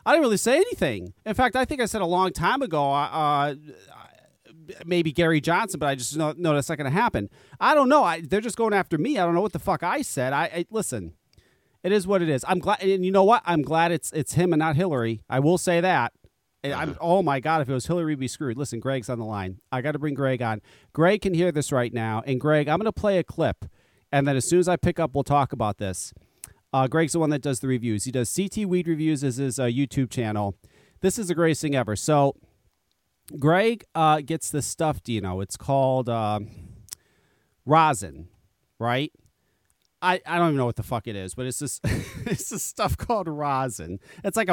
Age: 40-59